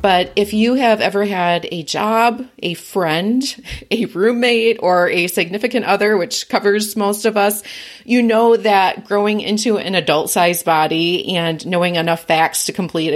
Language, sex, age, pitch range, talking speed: English, female, 30-49, 165-205 Hz, 160 wpm